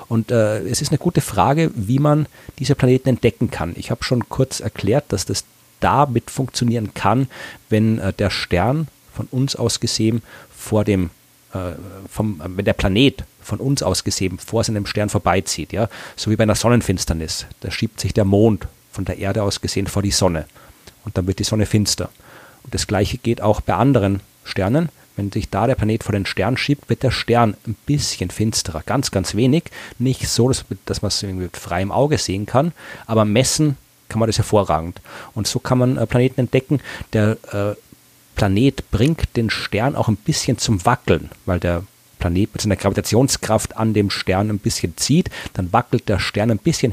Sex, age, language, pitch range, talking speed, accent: male, 40-59, German, 100-130 Hz, 175 wpm, German